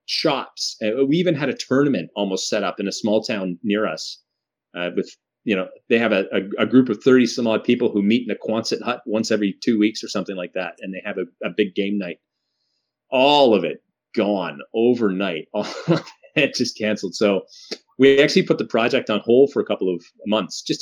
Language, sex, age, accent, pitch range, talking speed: English, male, 30-49, American, 100-125 Hz, 210 wpm